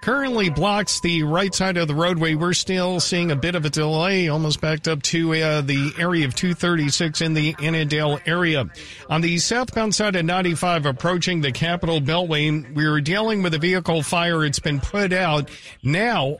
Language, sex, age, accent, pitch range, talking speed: English, male, 50-69, American, 150-180 Hz, 185 wpm